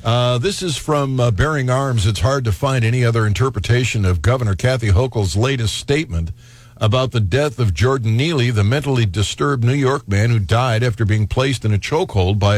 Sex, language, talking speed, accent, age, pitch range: male, English, 195 wpm, American, 60-79, 110-135 Hz